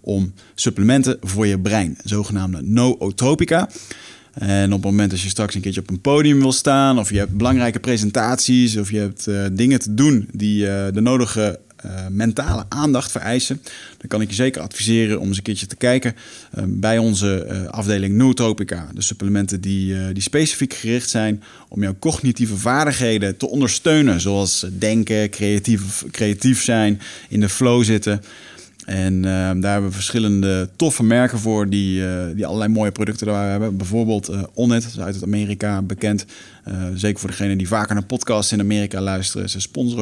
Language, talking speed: Dutch, 180 wpm